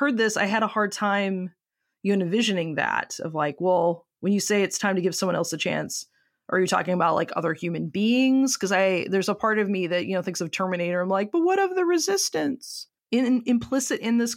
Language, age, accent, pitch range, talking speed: English, 20-39, American, 165-215 Hz, 240 wpm